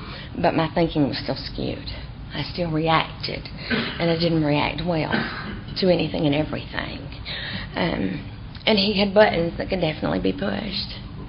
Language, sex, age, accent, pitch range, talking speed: English, female, 40-59, American, 145-205 Hz, 150 wpm